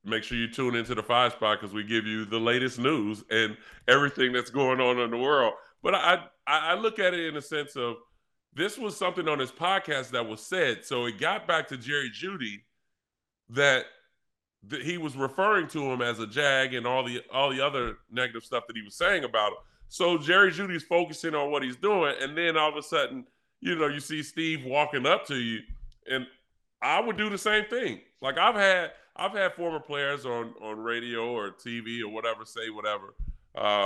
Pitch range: 120-150 Hz